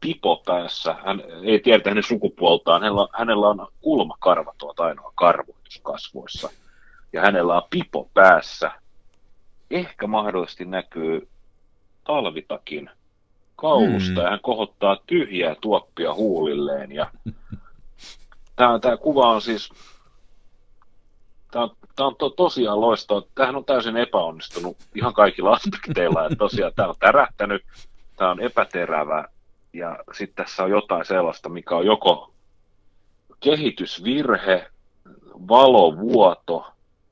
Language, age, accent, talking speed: Finnish, 40-59, native, 105 wpm